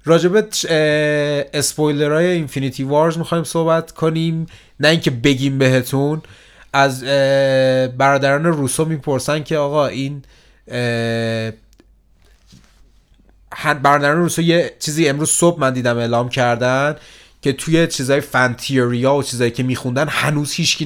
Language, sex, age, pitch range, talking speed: Persian, male, 30-49, 125-155 Hz, 110 wpm